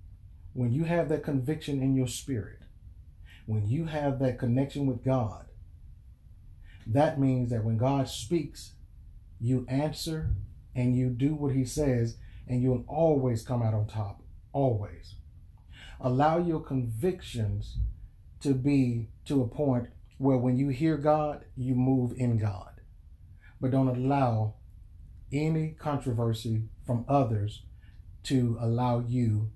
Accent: American